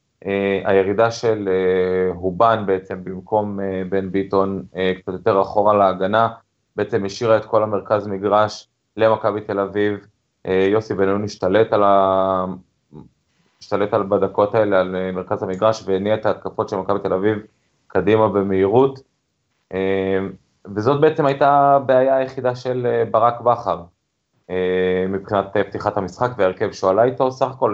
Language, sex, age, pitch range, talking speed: Hebrew, male, 20-39, 95-110 Hz, 145 wpm